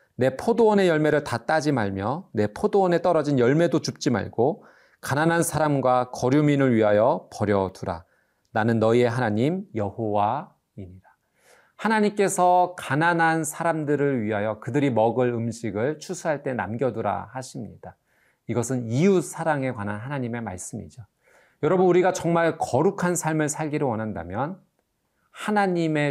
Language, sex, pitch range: Korean, male, 105-150 Hz